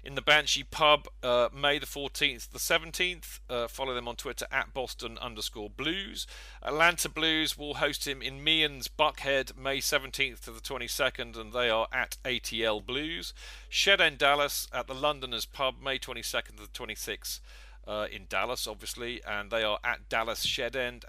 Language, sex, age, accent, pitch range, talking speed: English, male, 40-59, British, 115-145 Hz, 175 wpm